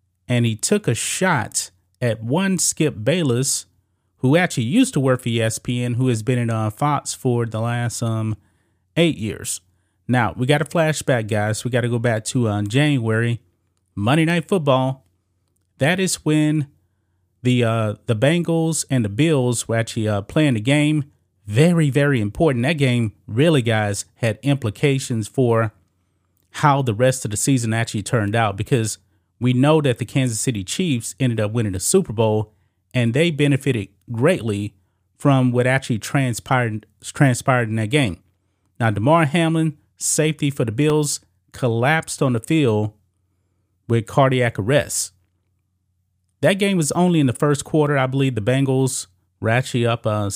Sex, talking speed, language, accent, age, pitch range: male, 165 wpm, English, American, 30-49, 105-140 Hz